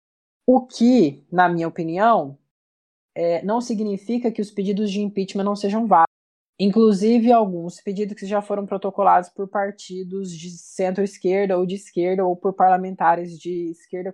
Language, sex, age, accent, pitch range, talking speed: Portuguese, female, 20-39, Brazilian, 180-210 Hz, 145 wpm